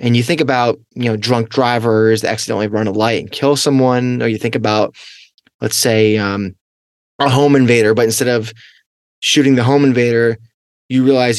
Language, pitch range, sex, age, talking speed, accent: English, 115-140 Hz, male, 20-39, 185 wpm, American